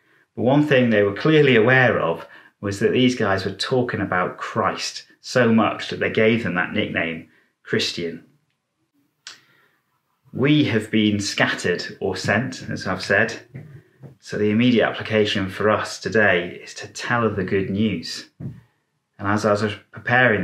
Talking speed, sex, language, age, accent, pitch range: 155 wpm, male, English, 30-49, British, 105-130 Hz